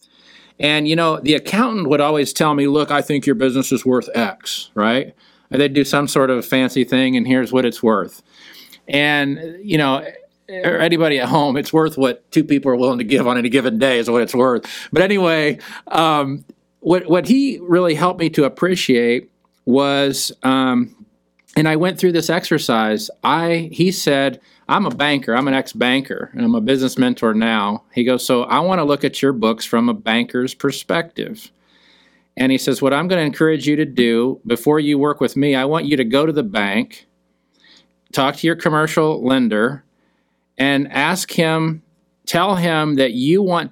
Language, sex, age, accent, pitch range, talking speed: English, male, 50-69, American, 125-165 Hz, 195 wpm